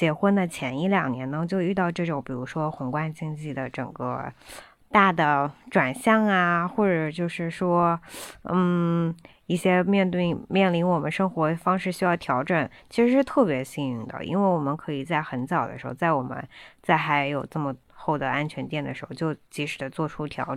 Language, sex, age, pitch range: Chinese, female, 20-39, 150-195 Hz